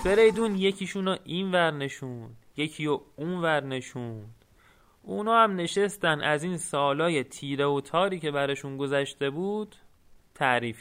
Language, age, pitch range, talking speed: Persian, 30-49, 140-190 Hz, 140 wpm